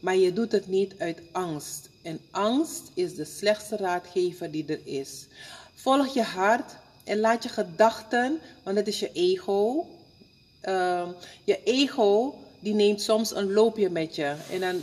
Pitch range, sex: 180-235 Hz, female